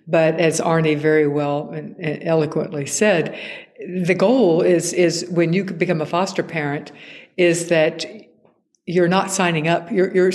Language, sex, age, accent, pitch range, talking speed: English, female, 60-79, American, 155-185 Hz, 155 wpm